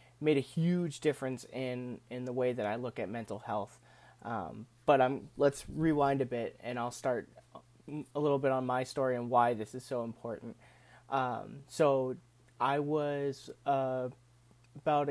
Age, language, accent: 30-49, English, American